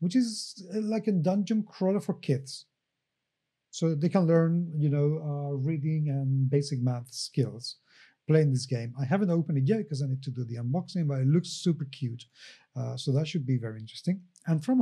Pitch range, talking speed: 135-170 Hz, 200 wpm